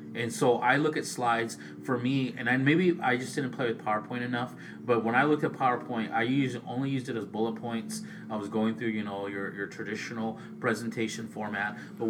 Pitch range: 110-135 Hz